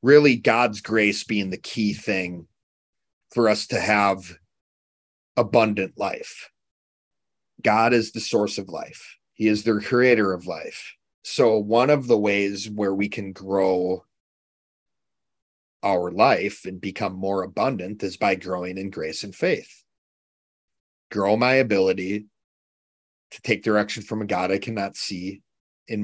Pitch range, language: 95-120 Hz, English